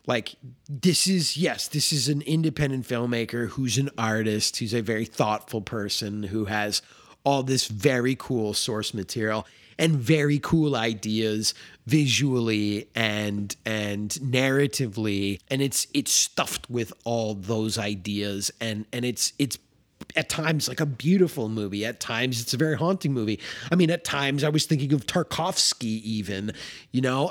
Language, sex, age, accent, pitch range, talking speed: English, male, 30-49, American, 110-150 Hz, 155 wpm